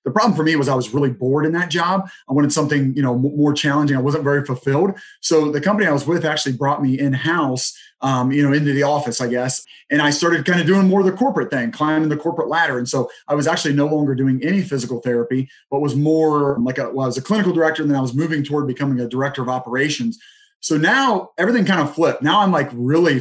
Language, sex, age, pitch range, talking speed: English, male, 30-49, 130-165 Hz, 250 wpm